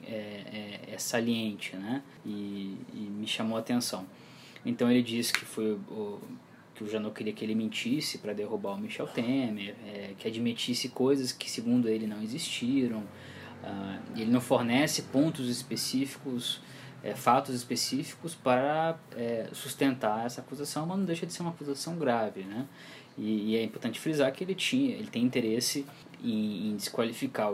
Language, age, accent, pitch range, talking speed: Portuguese, 20-39, Brazilian, 110-145 Hz, 160 wpm